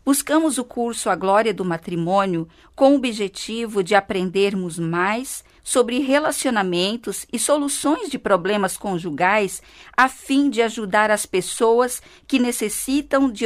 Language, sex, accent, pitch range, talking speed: Portuguese, female, Brazilian, 195-245 Hz, 130 wpm